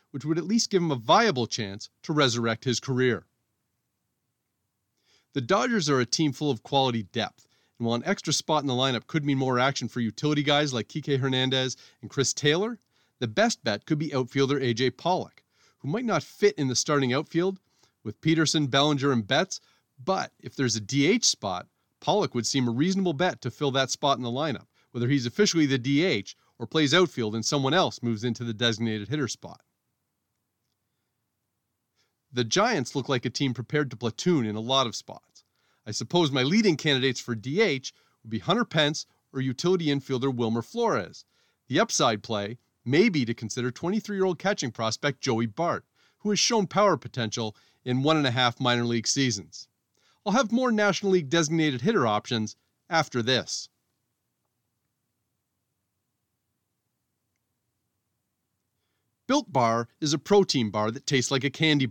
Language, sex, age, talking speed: English, male, 40-59, 165 wpm